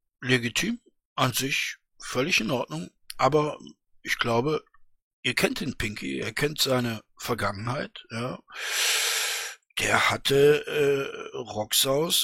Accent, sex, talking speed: German, male, 110 wpm